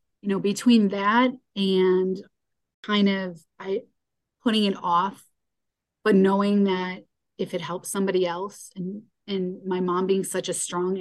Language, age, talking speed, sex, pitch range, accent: English, 30-49, 145 wpm, female, 180-205 Hz, American